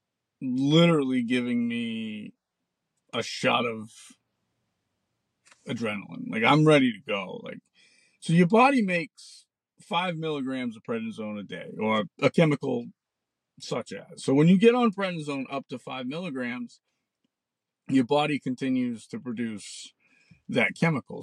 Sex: male